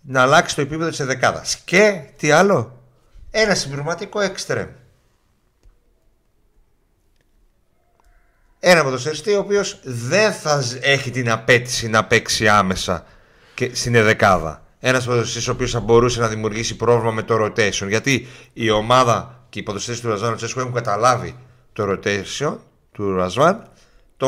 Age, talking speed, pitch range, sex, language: 60-79, 135 wpm, 110-145 Hz, male, Greek